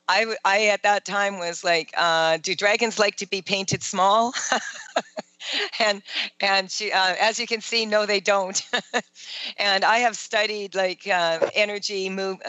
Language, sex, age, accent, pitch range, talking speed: English, female, 50-69, American, 175-205 Hz, 165 wpm